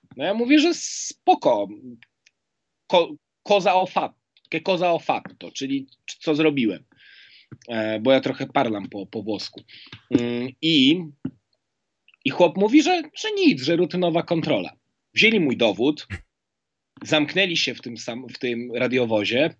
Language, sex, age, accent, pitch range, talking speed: Polish, male, 30-49, native, 120-170 Hz, 130 wpm